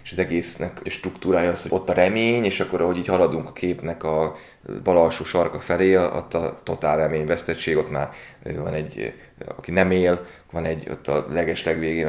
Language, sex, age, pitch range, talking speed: Hungarian, male, 30-49, 80-95 Hz, 190 wpm